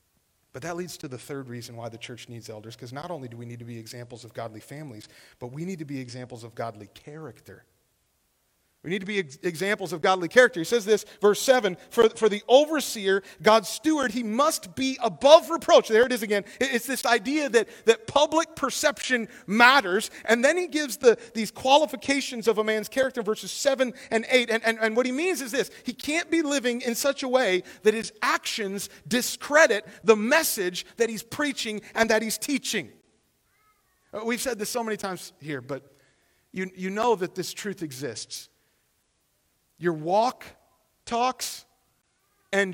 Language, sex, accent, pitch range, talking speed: English, male, American, 185-270 Hz, 185 wpm